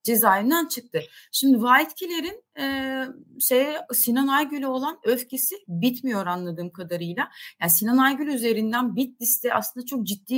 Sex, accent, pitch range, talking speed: female, native, 205-265 Hz, 120 wpm